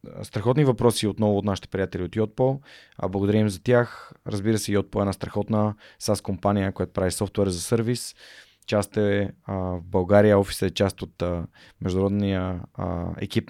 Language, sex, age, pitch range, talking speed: Bulgarian, male, 20-39, 100-115 Hz, 155 wpm